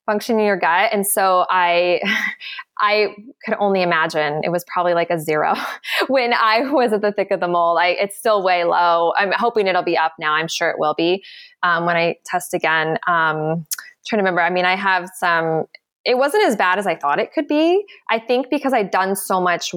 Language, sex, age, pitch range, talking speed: English, female, 20-39, 180-250 Hz, 220 wpm